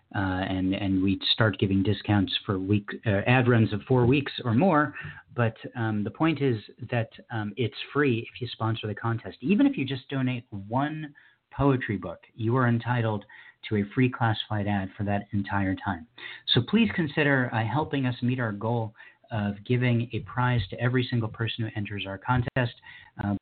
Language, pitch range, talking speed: English, 110-135 Hz, 185 wpm